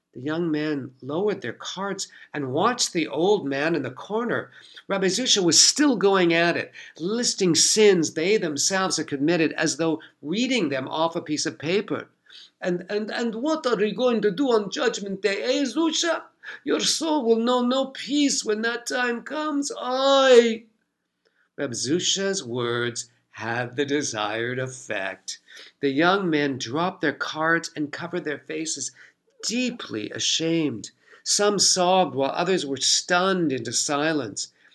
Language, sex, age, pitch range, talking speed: English, male, 50-69, 140-200 Hz, 150 wpm